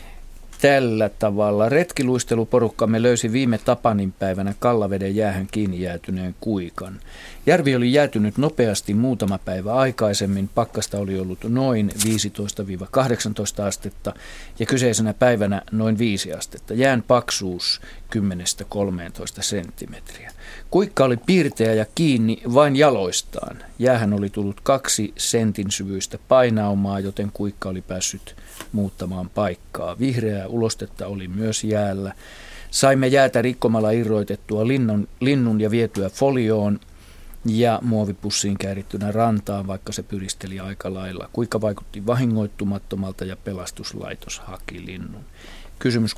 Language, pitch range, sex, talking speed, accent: Finnish, 95-115 Hz, male, 110 wpm, native